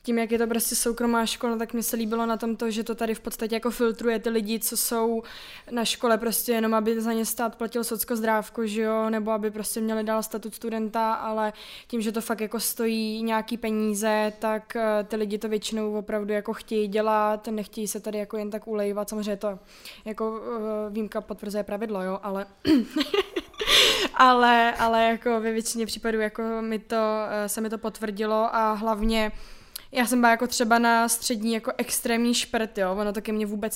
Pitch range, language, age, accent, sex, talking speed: 215-230 Hz, Czech, 20-39, native, female, 185 wpm